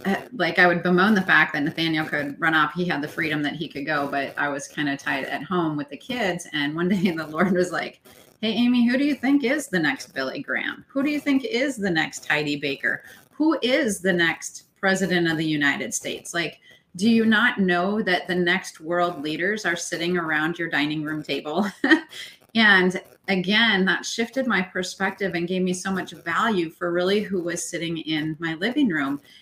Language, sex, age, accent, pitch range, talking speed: English, female, 30-49, American, 170-215 Hz, 210 wpm